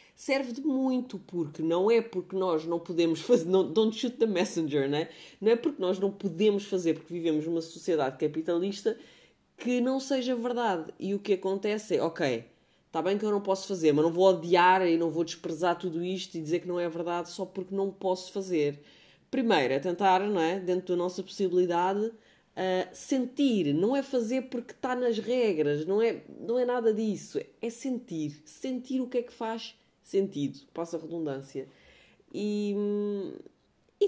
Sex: female